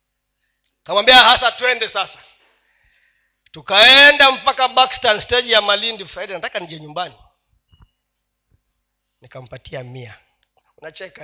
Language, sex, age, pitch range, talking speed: Swahili, male, 40-59, 165-265 Hz, 90 wpm